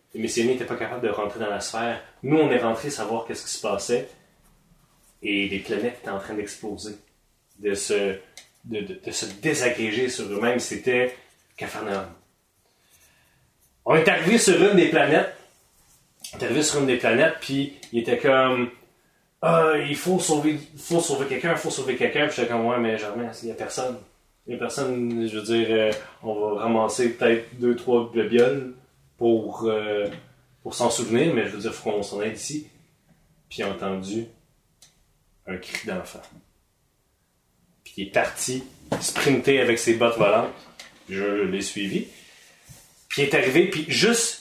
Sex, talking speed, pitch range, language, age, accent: male, 175 wpm, 110-155 Hz, French, 30-49, Canadian